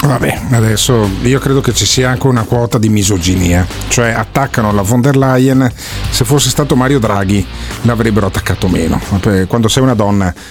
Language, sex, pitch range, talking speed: Italian, male, 100-125 Hz, 175 wpm